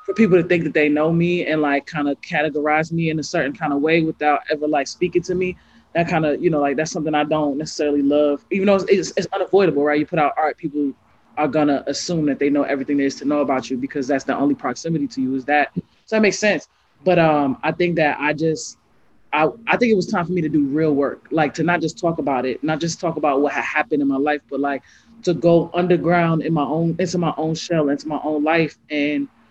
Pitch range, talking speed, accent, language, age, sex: 145-175 Hz, 260 wpm, American, English, 20-39, male